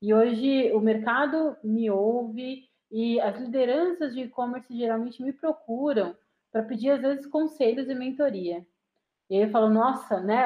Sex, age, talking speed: female, 30-49, 155 wpm